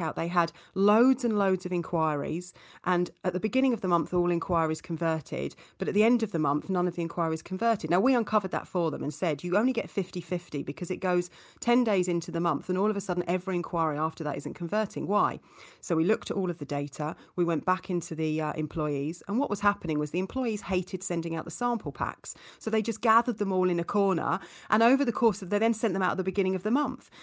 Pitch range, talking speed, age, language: 170-215 Hz, 255 wpm, 30-49, English